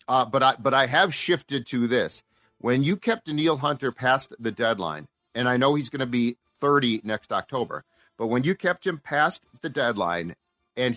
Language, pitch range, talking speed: English, 115-145 Hz, 200 wpm